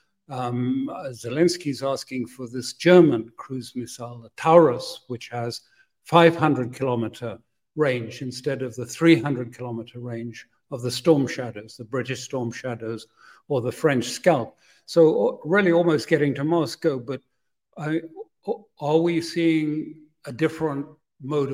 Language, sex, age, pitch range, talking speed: English, male, 60-79, 125-160 Hz, 135 wpm